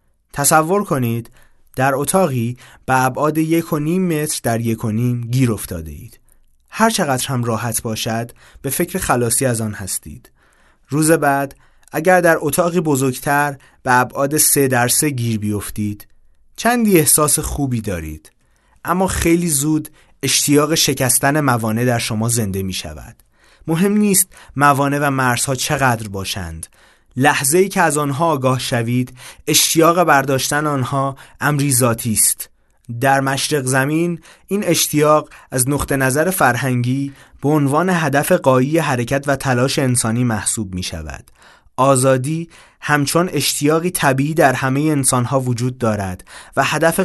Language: Persian